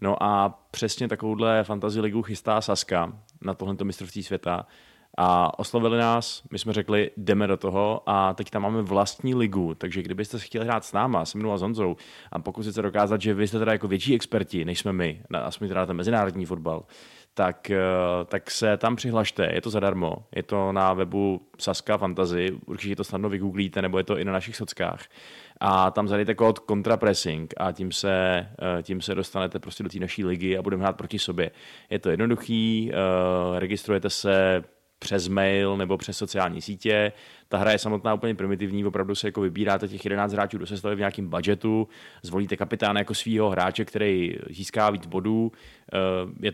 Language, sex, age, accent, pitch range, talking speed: Czech, male, 30-49, native, 95-105 Hz, 185 wpm